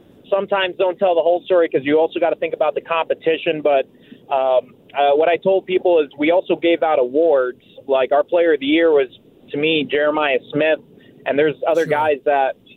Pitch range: 140-190 Hz